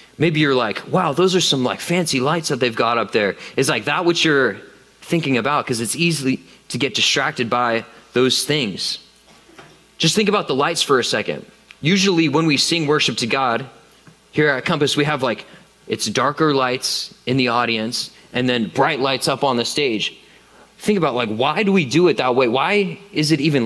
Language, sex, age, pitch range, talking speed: English, male, 20-39, 130-170 Hz, 205 wpm